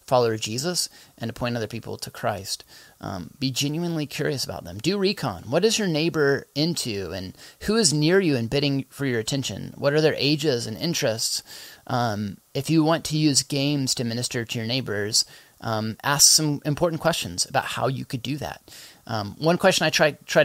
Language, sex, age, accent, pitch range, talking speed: English, male, 30-49, American, 115-150 Hz, 195 wpm